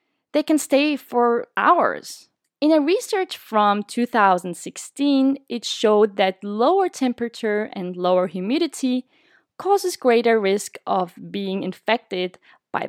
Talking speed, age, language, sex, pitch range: 115 wpm, 20-39, English, female, 195-275 Hz